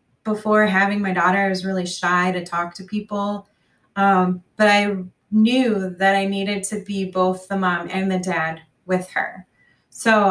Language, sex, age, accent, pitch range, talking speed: English, female, 20-39, American, 185-220 Hz, 175 wpm